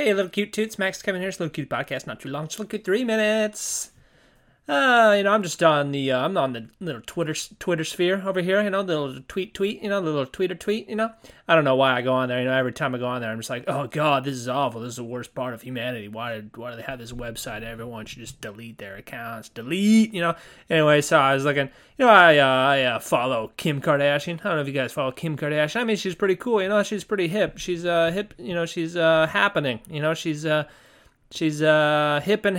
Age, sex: 20-39, male